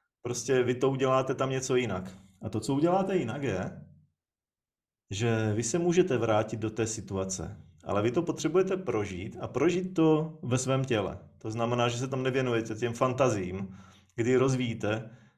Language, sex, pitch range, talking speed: Czech, male, 110-135 Hz, 165 wpm